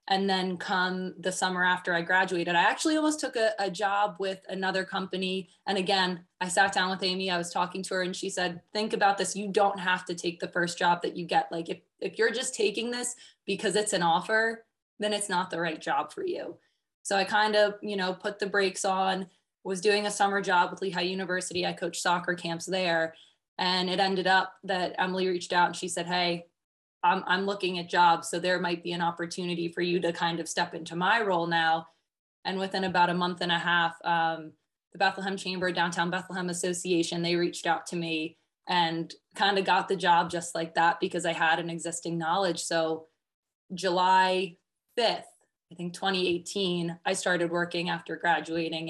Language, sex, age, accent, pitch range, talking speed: English, female, 20-39, American, 170-190 Hz, 205 wpm